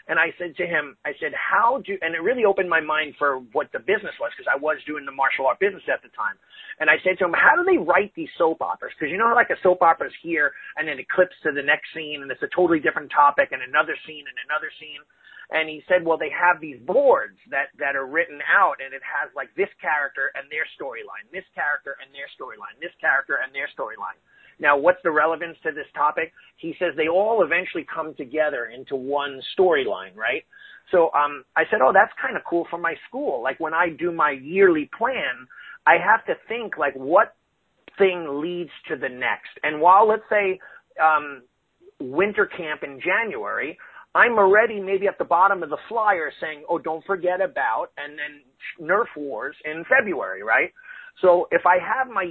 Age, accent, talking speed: 30-49, American, 215 wpm